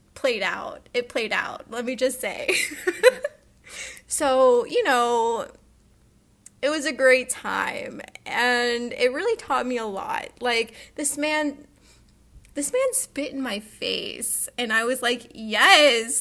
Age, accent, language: 10-29, American, English